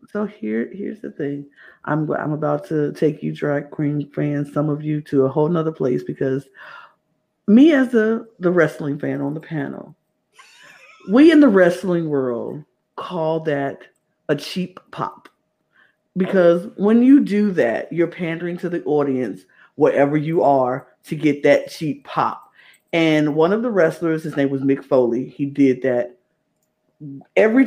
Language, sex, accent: English, female, American